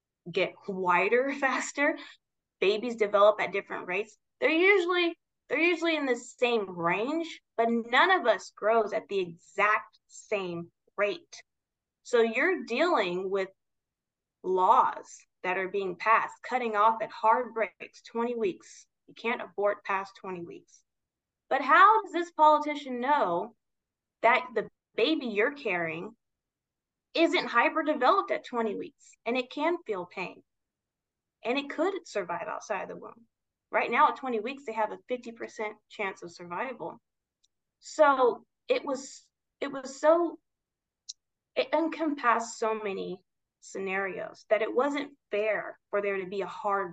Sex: female